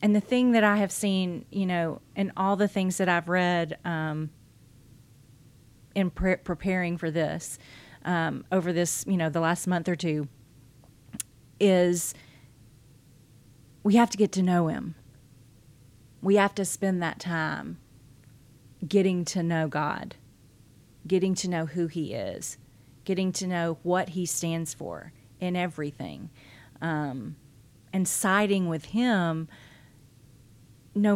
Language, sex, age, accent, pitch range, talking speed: English, female, 40-59, American, 135-195 Hz, 135 wpm